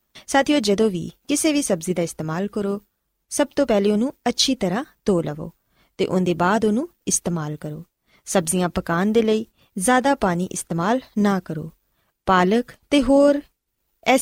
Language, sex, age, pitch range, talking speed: Punjabi, female, 20-39, 175-245 Hz, 145 wpm